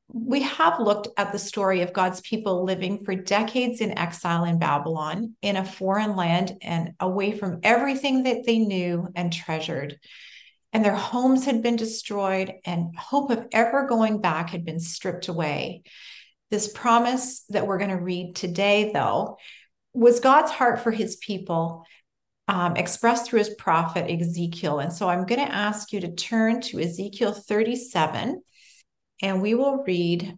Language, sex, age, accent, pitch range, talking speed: English, female, 40-59, American, 175-225 Hz, 160 wpm